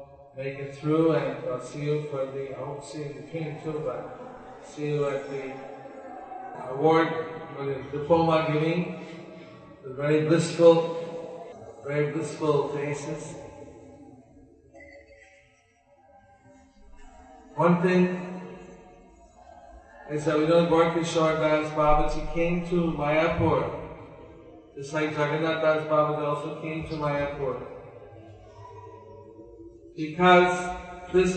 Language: English